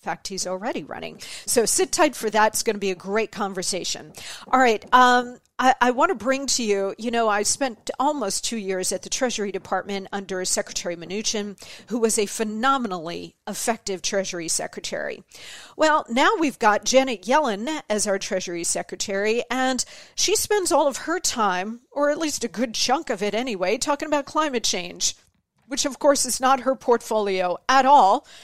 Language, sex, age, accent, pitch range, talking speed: English, female, 40-59, American, 200-265 Hz, 180 wpm